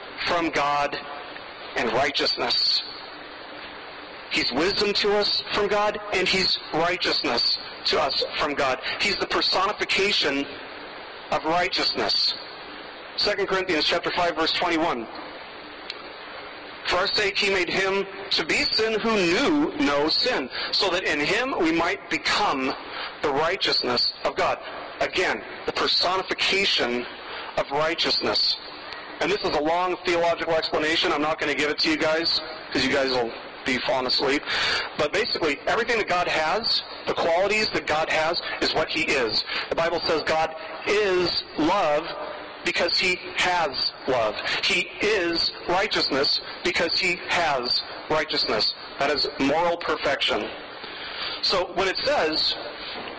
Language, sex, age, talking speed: English, male, 40-59, 135 wpm